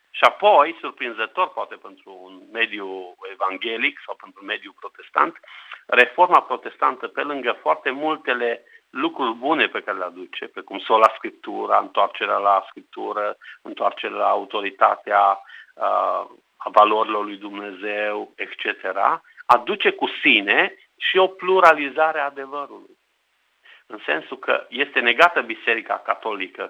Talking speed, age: 125 wpm, 50-69